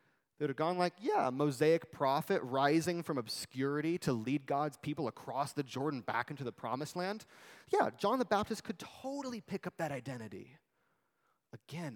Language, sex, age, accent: English, male, 30-49, American